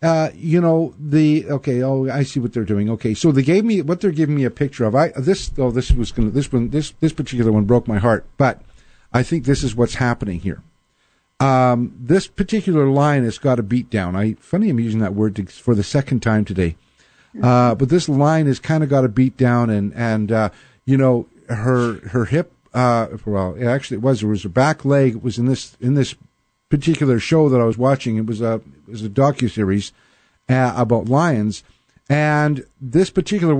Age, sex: 50-69, male